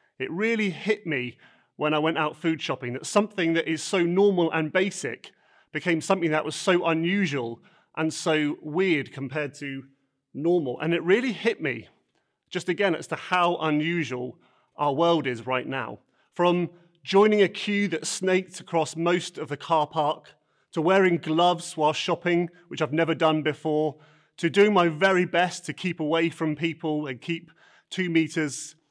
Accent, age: British, 30-49